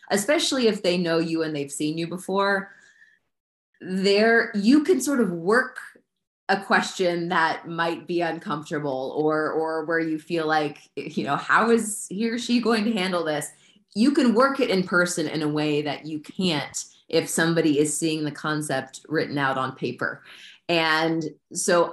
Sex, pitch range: female, 155-220 Hz